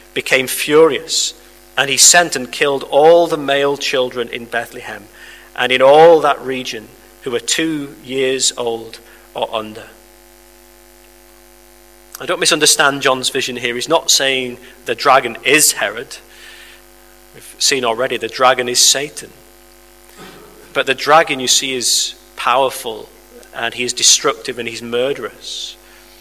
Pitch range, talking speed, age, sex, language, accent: 125-145 Hz, 135 wpm, 40-59, male, English, British